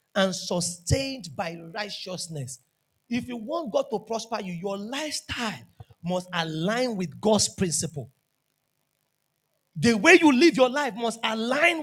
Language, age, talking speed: English, 40-59, 130 wpm